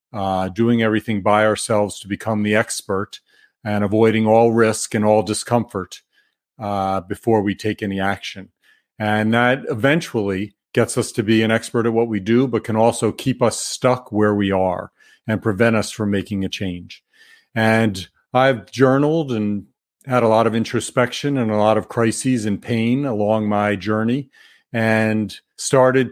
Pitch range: 105-120 Hz